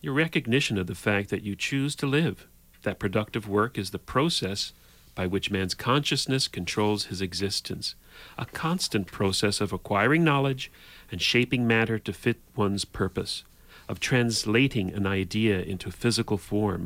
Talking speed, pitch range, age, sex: 155 wpm, 95-115 Hz, 40-59, male